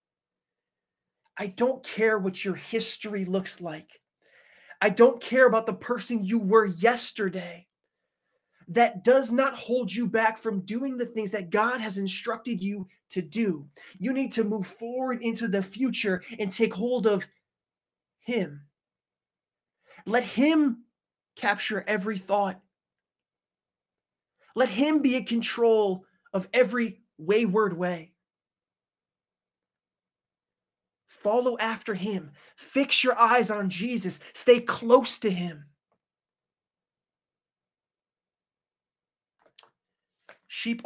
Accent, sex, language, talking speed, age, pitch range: American, male, English, 110 wpm, 20-39, 180-235 Hz